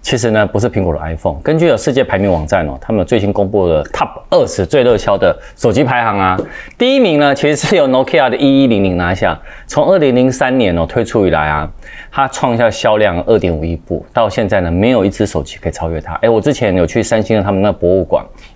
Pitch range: 85-125 Hz